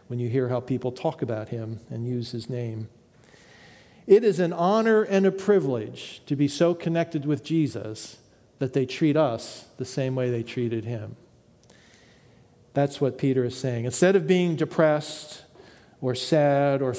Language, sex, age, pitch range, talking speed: English, male, 40-59, 125-165 Hz, 165 wpm